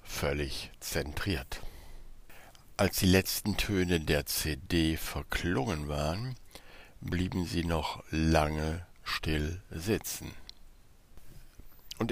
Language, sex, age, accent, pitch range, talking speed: German, male, 60-79, German, 75-95 Hz, 85 wpm